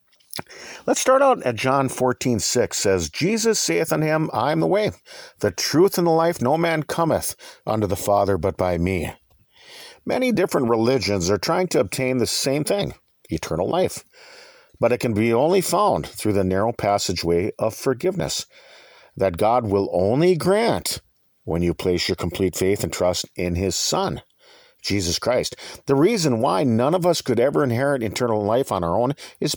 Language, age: English, 50-69